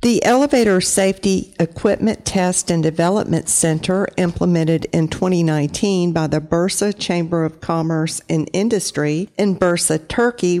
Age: 50-69